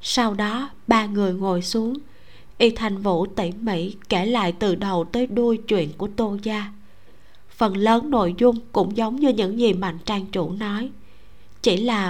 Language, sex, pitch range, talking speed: Vietnamese, female, 190-235 Hz, 180 wpm